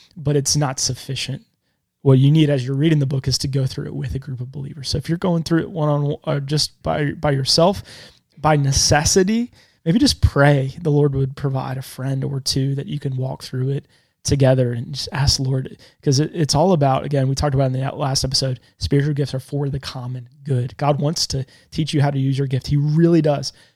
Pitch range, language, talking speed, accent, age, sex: 135-150 Hz, English, 235 wpm, American, 20-39, male